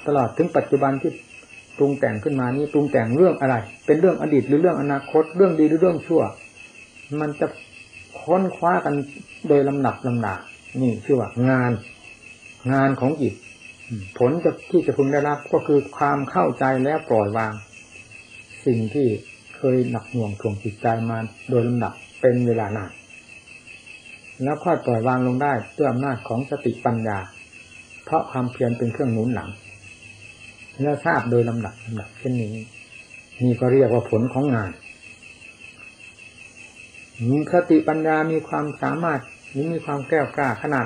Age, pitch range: 60-79, 115-150 Hz